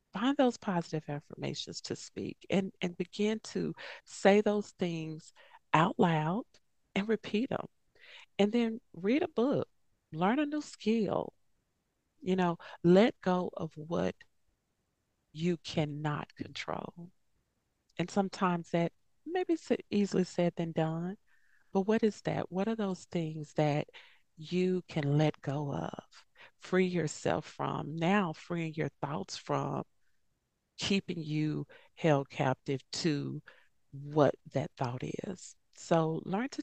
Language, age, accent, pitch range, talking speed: English, 40-59, American, 155-205 Hz, 130 wpm